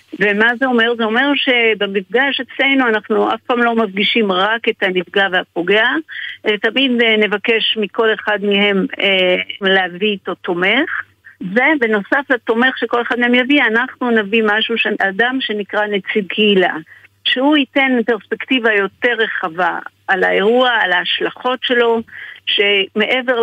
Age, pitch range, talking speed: 50-69, 195-240 Hz, 125 wpm